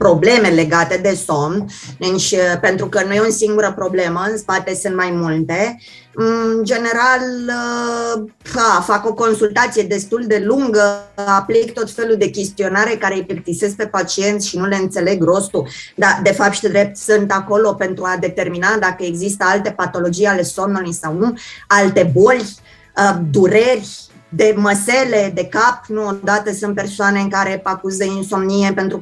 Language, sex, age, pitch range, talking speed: Romanian, female, 20-39, 185-215 Hz, 155 wpm